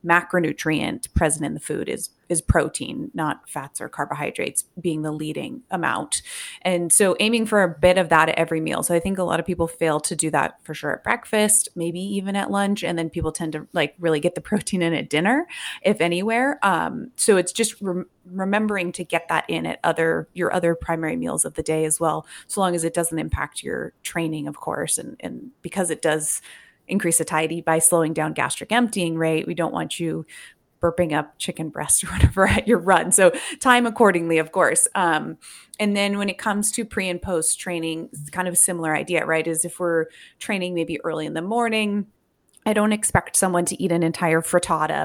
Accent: American